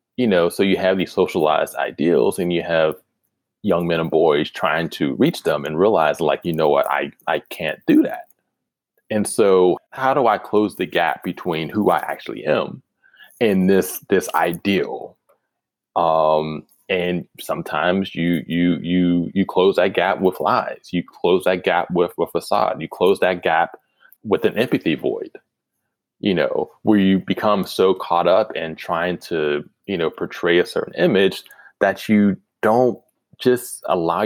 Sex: male